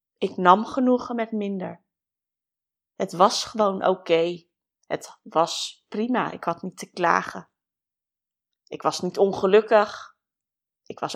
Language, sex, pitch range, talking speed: Dutch, female, 185-250 Hz, 125 wpm